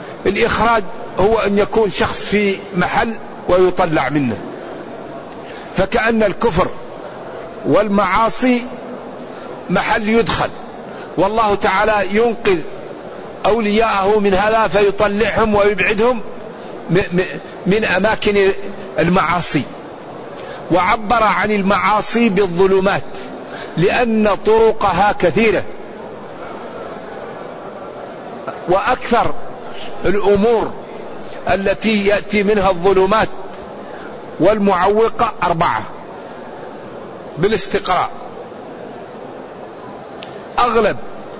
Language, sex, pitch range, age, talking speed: Arabic, male, 190-220 Hz, 50-69, 60 wpm